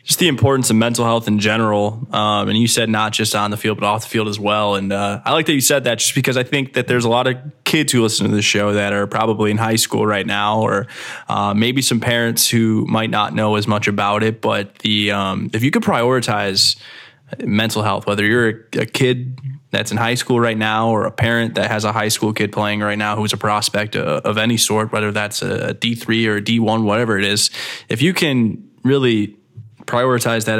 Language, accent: English, American